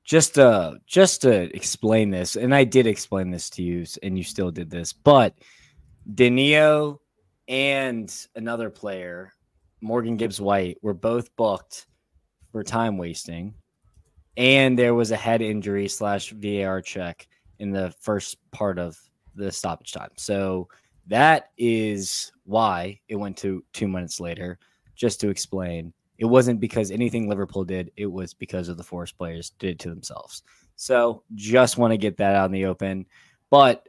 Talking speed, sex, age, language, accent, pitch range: 155 wpm, male, 20-39, English, American, 95-115 Hz